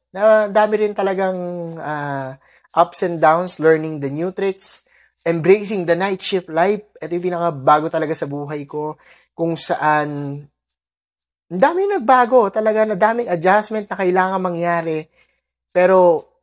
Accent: native